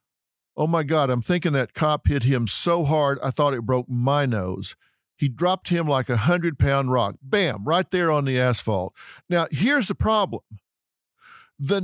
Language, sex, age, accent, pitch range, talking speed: English, male, 50-69, American, 155-245 Hz, 175 wpm